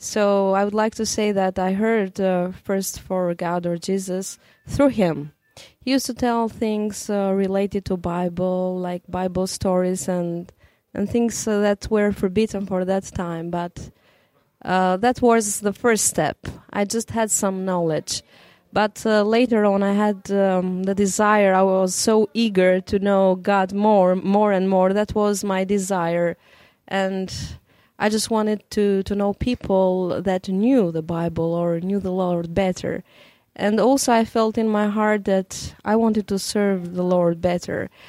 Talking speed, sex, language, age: 170 wpm, female, English, 20-39